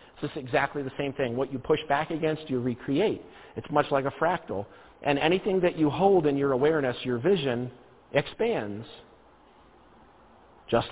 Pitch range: 125-145 Hz